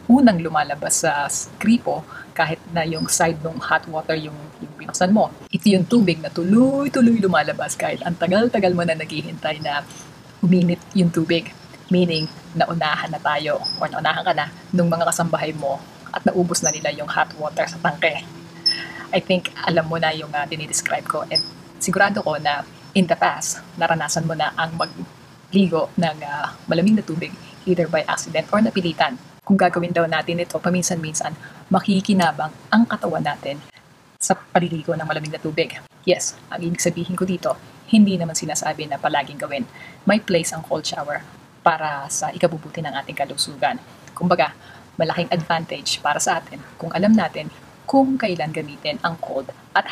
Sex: female